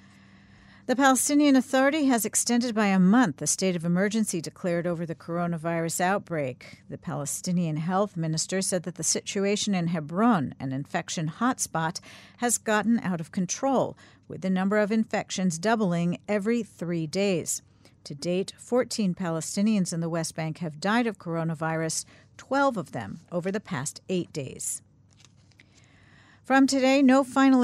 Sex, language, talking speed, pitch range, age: female, English, 150 wpm, 160-220 Hz, 50-69